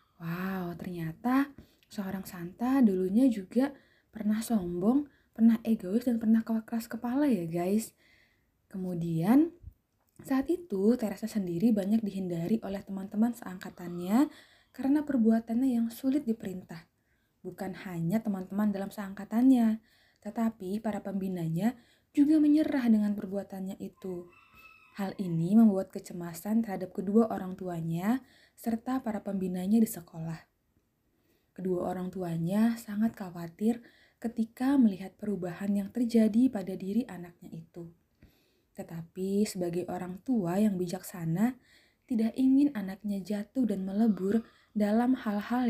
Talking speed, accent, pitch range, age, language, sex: 110 wpm, native, 185-230 Hz, 20-39, Indonesian, female